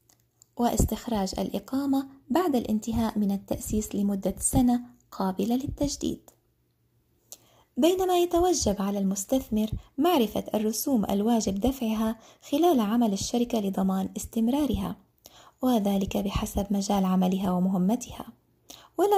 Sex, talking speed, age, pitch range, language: female, 90 wpm, 20-39, 200-265 Hz, Arabic